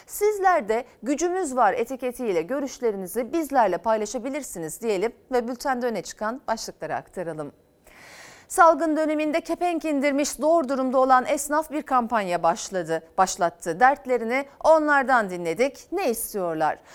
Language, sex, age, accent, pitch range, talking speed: Turkish, female, 40-59, native, 230-305 Hz, 115 wpm